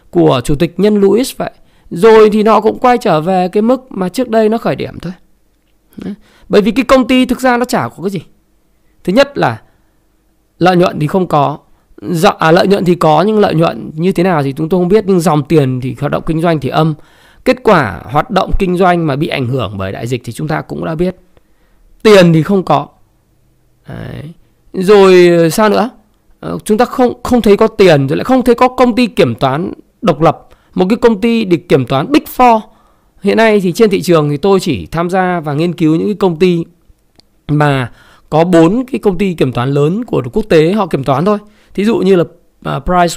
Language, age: Vietnamese, 20-39